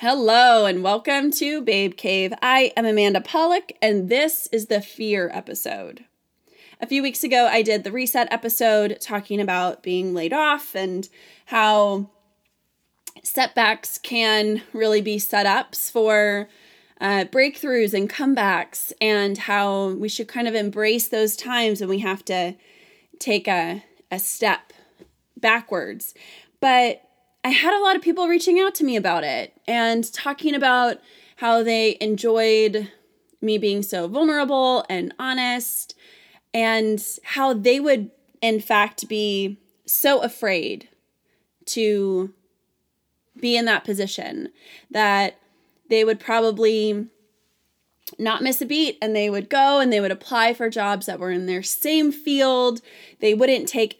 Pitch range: 205-260 Hz